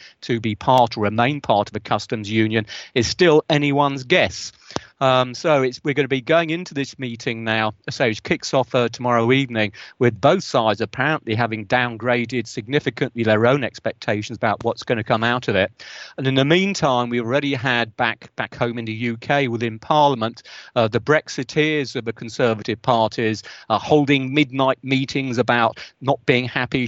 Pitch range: 115-135 Hz